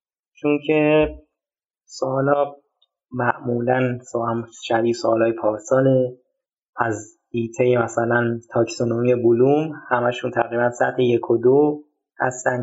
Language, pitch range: Persian, 110-145 Hz